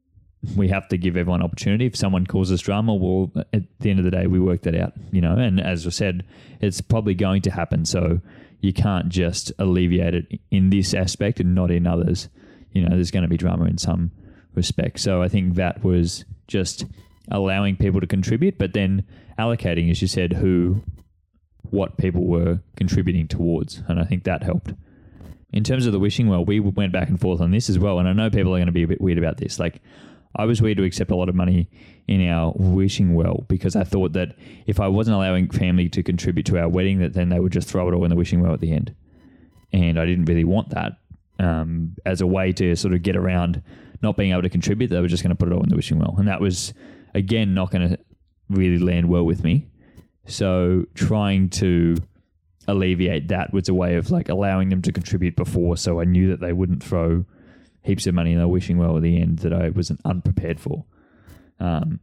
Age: 20-39